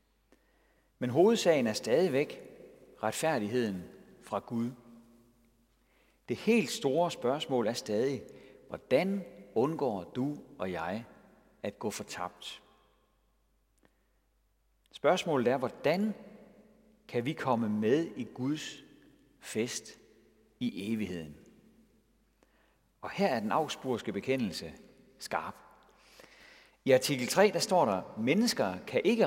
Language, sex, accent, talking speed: Danish, male, native, 100 wpm